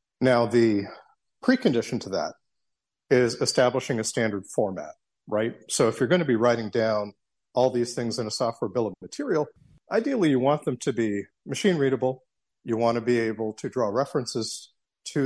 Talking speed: 175 wpm